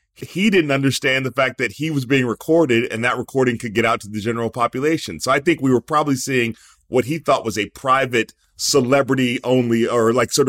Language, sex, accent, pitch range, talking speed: English, male, American, 115-140 Hz, 215 wpm